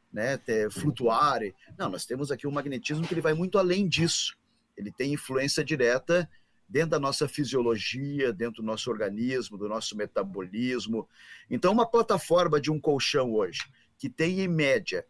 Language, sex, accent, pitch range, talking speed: Portuguese, male, Brazilian, 120-165 Hz, 160 wpm